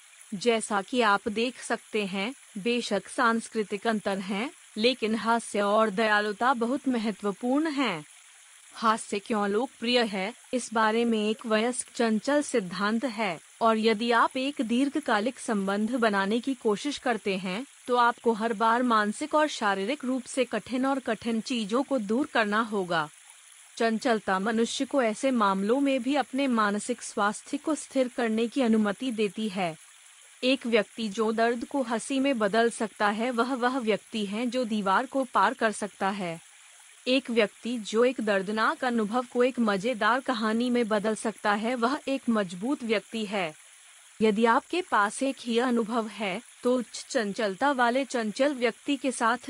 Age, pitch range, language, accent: 30-49, 215-255 Hz, Hindi, native